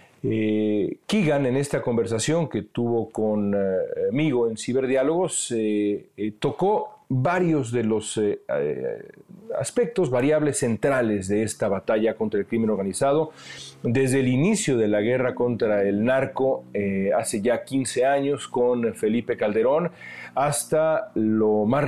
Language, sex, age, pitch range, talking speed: Spanish, male, 40-59, 105-145 Hz, 135 wpm